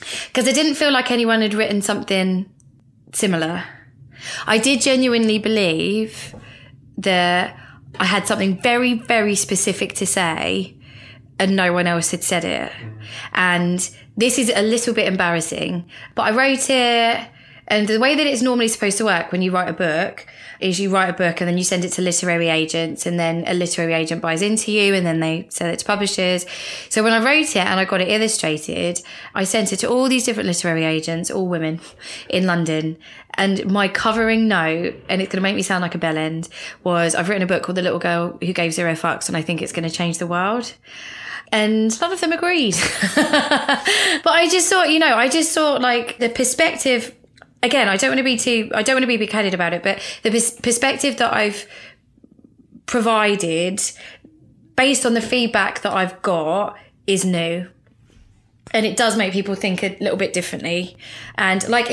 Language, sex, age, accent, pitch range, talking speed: English, female, 20-39, British, 170-235 Hz, 195 wpm